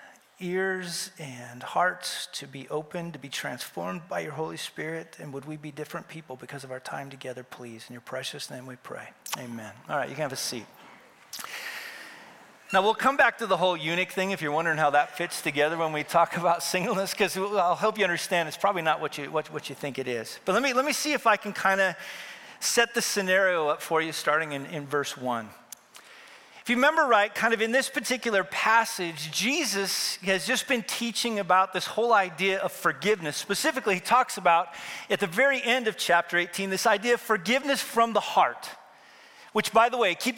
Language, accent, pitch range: English, American, 170-230 Hz